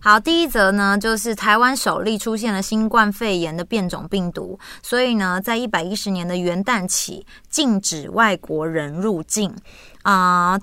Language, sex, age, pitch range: Chinese, female, 20-39, 175-220 Hz